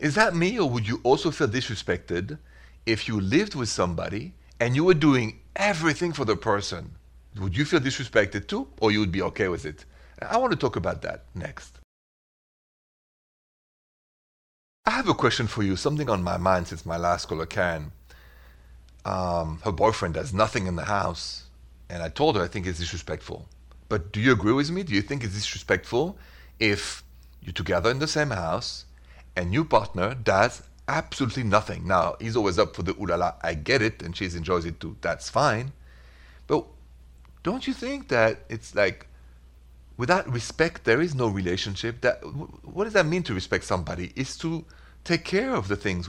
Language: English